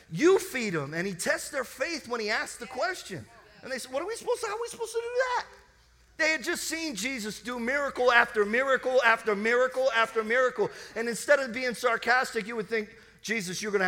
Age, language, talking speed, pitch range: 40-59, English, 230 wpm, 185-255 Hz